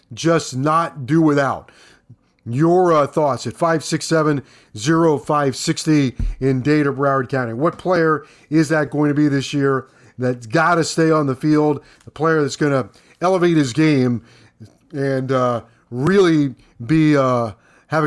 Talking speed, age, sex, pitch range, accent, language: 145 wpm, 40-59, male, 130-165 Hz, American, English